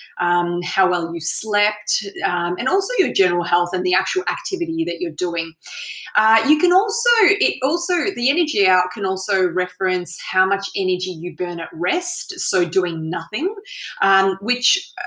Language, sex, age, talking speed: English, female, 20-39, 165 wpm